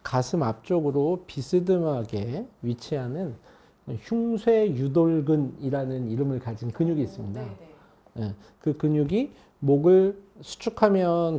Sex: male